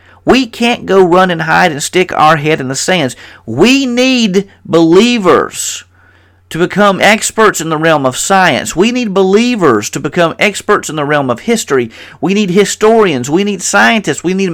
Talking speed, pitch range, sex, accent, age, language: 180 wpm, 125-185 Hz, male, American, 50-69, English